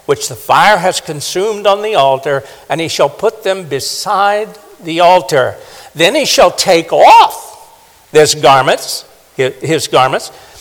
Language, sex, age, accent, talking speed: English, male, 60-79, American, 130 wpm